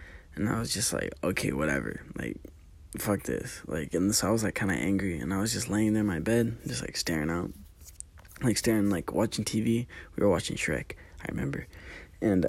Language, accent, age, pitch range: English, American, 20-39, 80-105 Hz